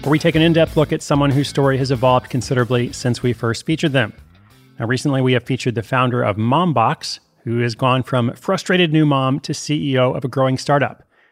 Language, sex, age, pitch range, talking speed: English, male, 30-49, 125-155 Hz, 210 wpm